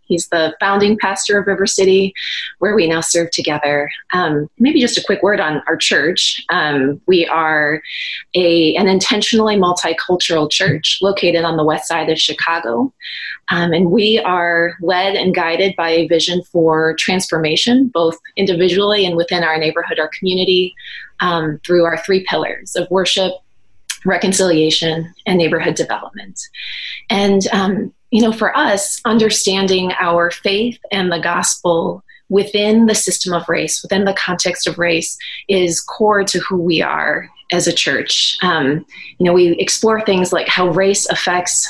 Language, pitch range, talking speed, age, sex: English, 165-195 Hz, 155 wpm, 20-39, female